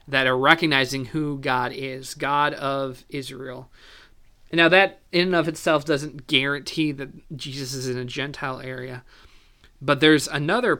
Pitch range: 130-155 Hz